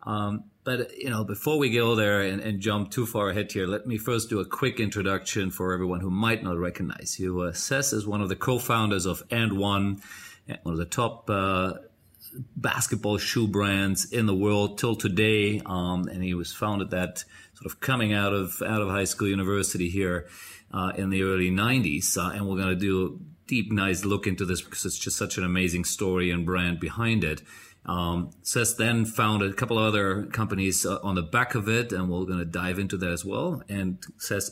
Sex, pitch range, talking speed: male, 90-110 Hz, 210 wpm